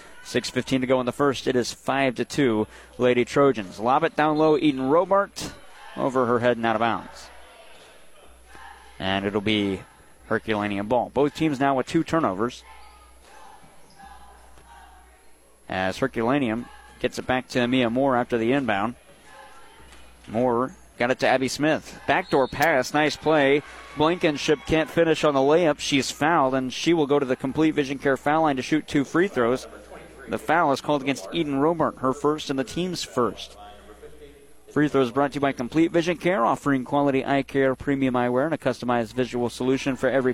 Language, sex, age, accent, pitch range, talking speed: English, male, 30-49, American, 110-145 Hz, 170 wpm